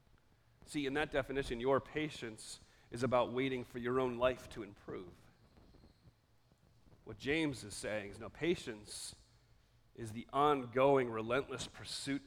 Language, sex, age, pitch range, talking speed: English, male, 40-59, 115-135 Hz, 130 wpm